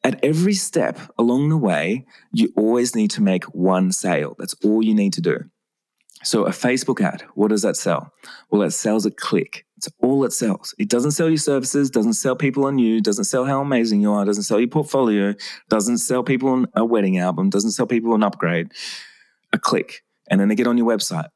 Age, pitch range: 20-39, 105-155 Hz